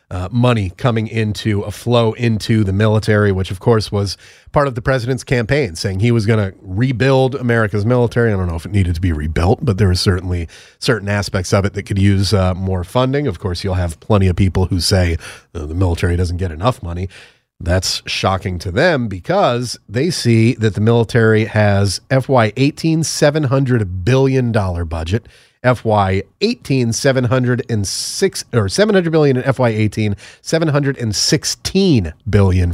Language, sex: English, male